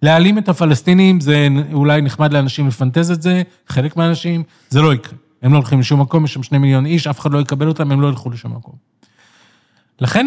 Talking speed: 210 wpm